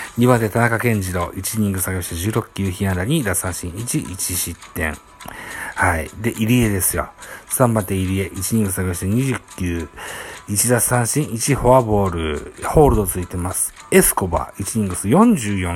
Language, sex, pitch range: Japanese, male, 90-115 Hz